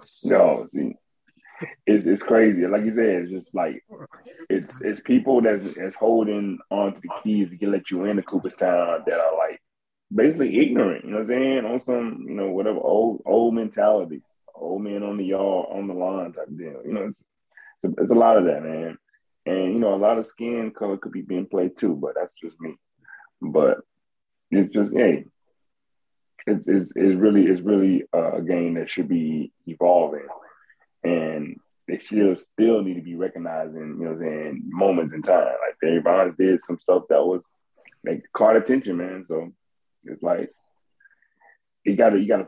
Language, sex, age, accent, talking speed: English, male, 30-49, American, 185 wpm